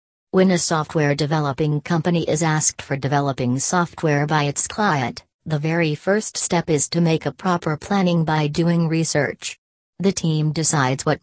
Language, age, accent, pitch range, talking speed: English, 40-59, American, 145-175 Hz, 160 wpm